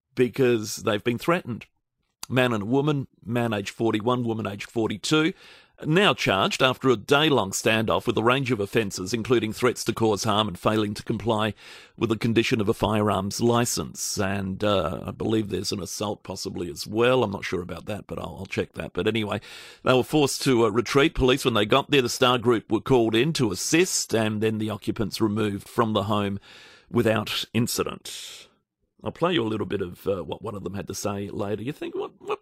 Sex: male